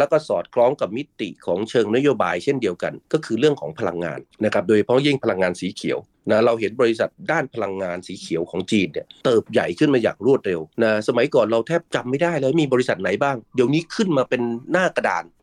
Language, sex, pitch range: Thai, male, 105-135 Hz